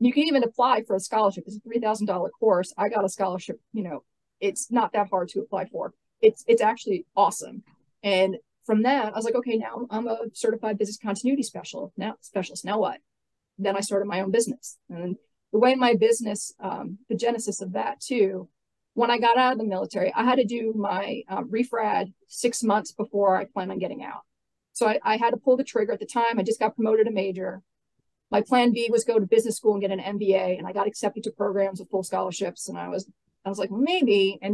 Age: 40-59